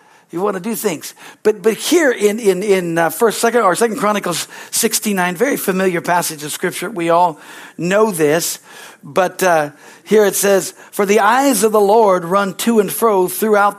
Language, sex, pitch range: English, male, 175-220 Hz